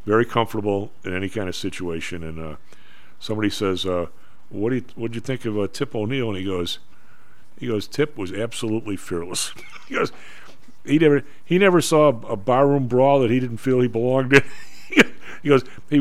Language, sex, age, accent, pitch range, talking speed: English, male, 50-69, American, 90-120 Hz, 200 wpm